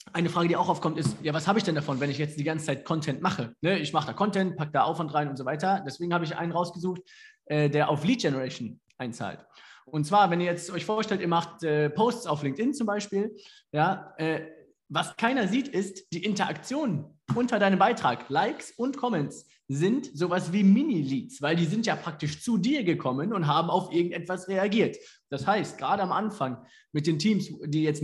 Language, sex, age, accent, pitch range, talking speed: German, male, 20-39, German, 150-200 Hz, 210 wpm